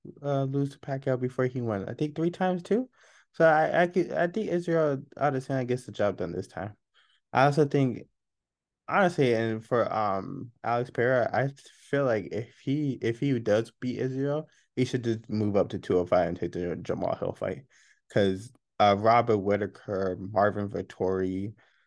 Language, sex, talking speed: English, male, 185 wpm